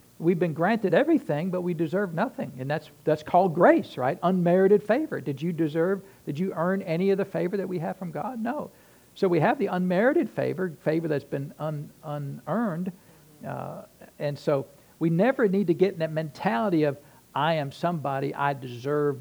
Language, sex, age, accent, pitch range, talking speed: English, male, 60-79, American, 130-180 Hz, 185 wpm